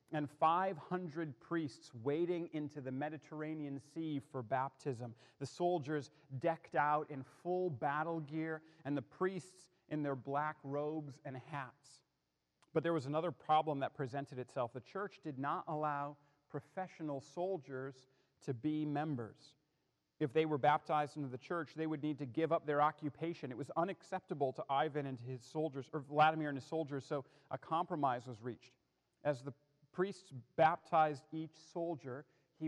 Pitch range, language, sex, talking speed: 130-155 Hz, English, male, 155 wpm